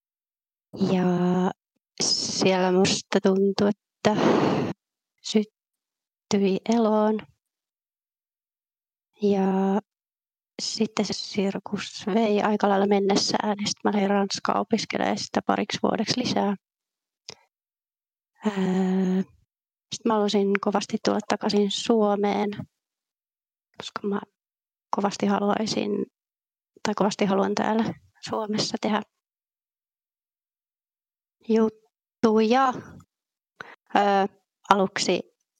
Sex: female